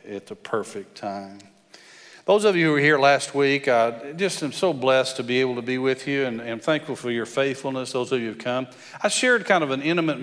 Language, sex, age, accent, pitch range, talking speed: English, male, 40-59, American, 125-170 Hz, 240 wpm